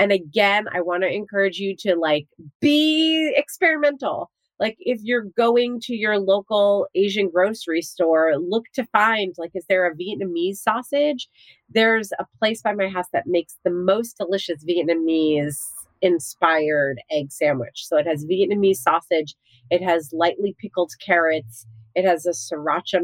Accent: American